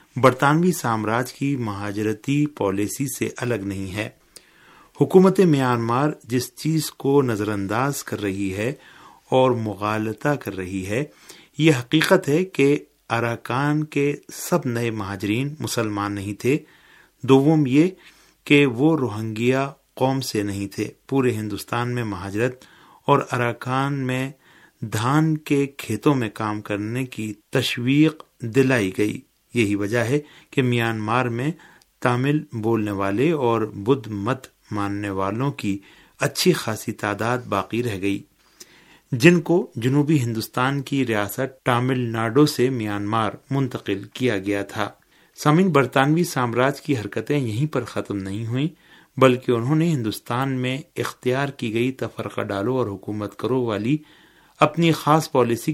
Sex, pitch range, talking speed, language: male, 110-140 Hz, 135 wpm, Urdu